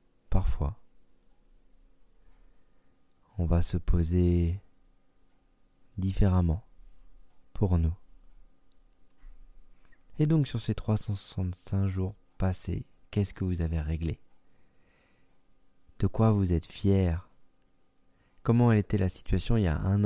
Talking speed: 100 wpm